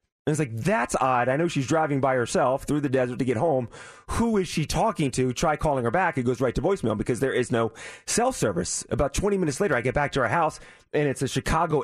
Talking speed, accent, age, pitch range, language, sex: 260 wpm, American, 30-49, 125-165 Hz, English, male